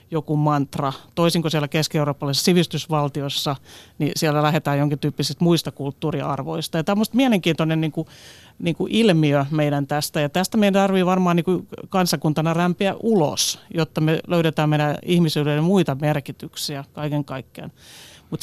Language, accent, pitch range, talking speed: Finnish, native, 145-170 Hz, 135 wpm